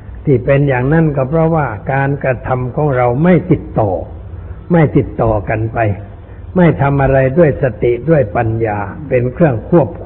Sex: male